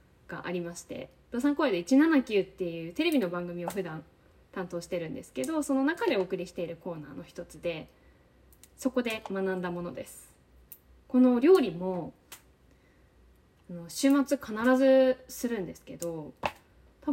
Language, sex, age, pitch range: Japanese, female, 20-39, 170-260 Hz